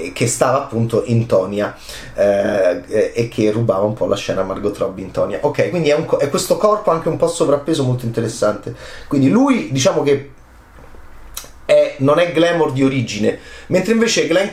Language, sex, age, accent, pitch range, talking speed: Italian, male, 30-49, native, 115-175 Hz, 180 wpm